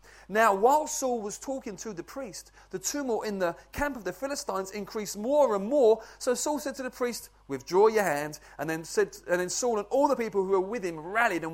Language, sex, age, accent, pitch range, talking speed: English, male, 30-49, British, 140-225 Hz, 235 wpm